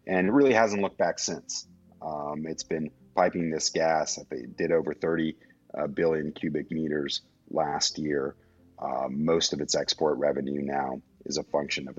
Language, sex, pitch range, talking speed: English, male, 80-90 Hz, 170 wpm